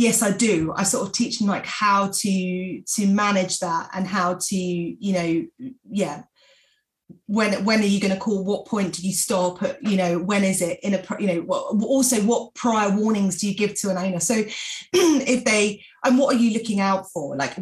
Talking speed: 215 wpm